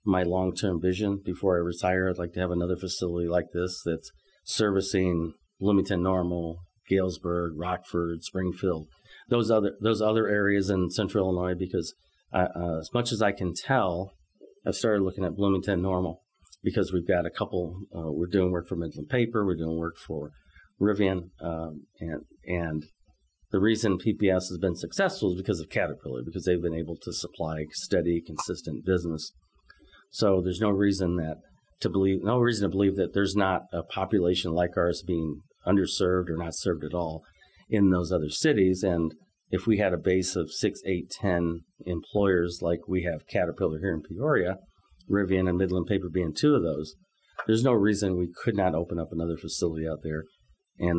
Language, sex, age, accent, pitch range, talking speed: English, male, 40-59, American, 85-95 Hz, 180 wpm